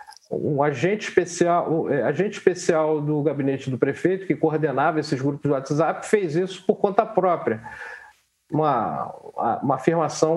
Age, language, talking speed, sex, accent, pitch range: 50-69, Portuguese, 150 wpm, male, Brazilian, 165-215 Hz